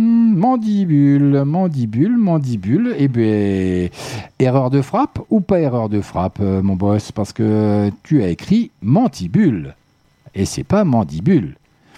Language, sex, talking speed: French, male, 130 wpm